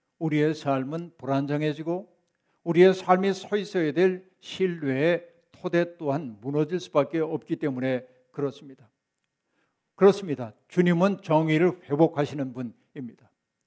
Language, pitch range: Korean, 140-190 Hz